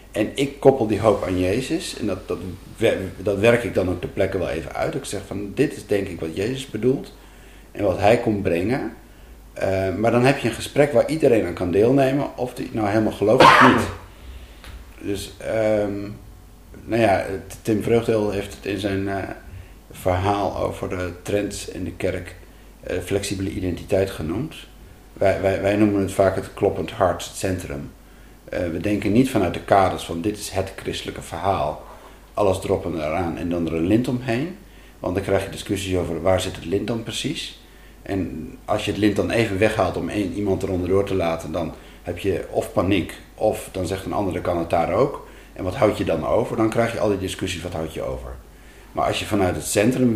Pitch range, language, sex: 90-110 Hz, Dutch, male